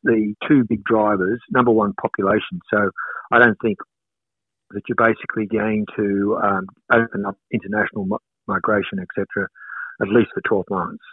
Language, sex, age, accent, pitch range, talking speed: English, male, 50-69, Australian, 105-130 Hz, 150 wpm